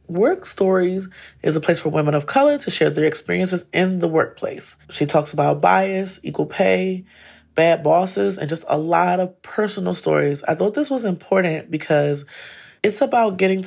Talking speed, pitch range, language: 175 wpm, 145-185 Hz, English